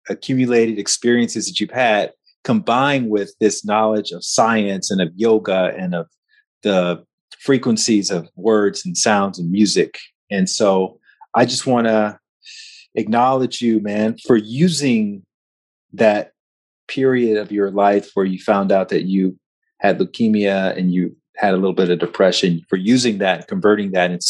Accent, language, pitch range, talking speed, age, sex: American, English, 100-130 Hz, 155 wpm, 30-49, male